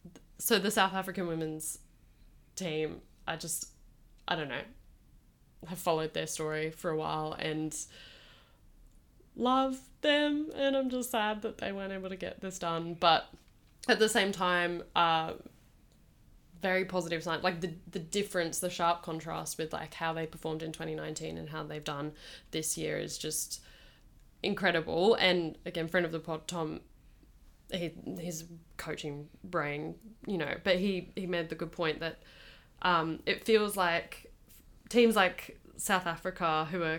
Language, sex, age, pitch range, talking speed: English, female, 10-29, 155-185 Hz, 155 wpm